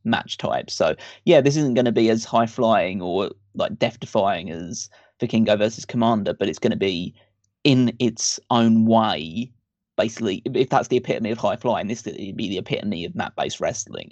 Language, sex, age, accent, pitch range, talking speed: English, male, 20-39, British, 110-125 Hz, 180 wpm